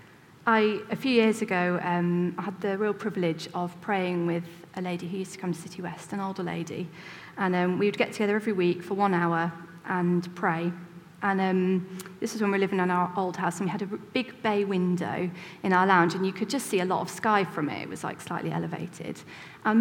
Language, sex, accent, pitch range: English, female, British, 180-230 Hz